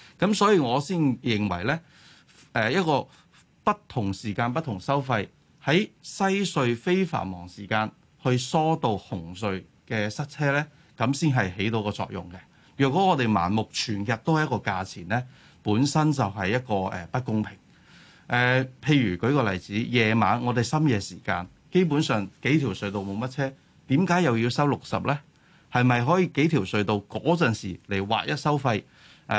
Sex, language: male, Chinese